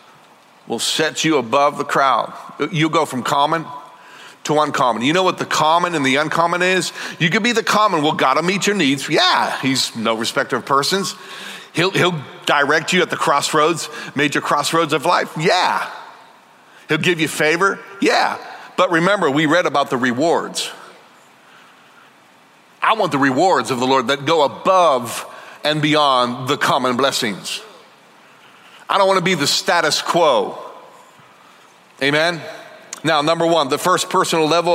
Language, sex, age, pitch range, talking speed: English, male, 50-69, 145-170 Hz, 160 wpm